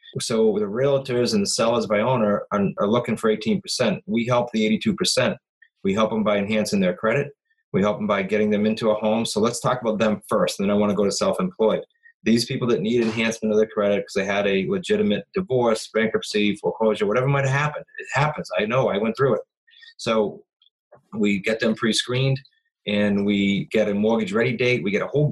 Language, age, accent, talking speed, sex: English, 30-49, American, 210 wpm, male